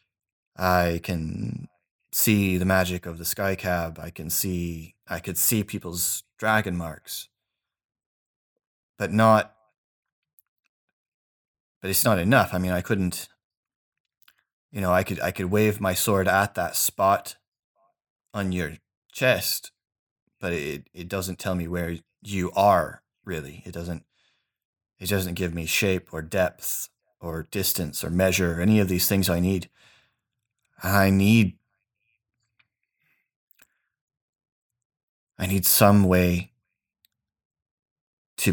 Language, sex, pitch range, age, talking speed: English, male, 90-100 Hz, 30-49, 125 wpm